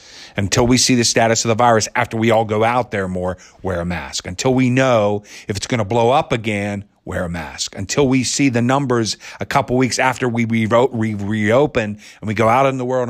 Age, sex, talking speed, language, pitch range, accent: 40-59, male, 225 wpm, English, 95-135 Hz, American